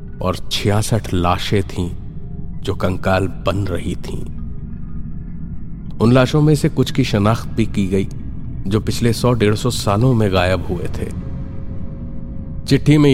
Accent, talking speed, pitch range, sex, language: native, 130 wpm, 95-125 Hz, male, Hindi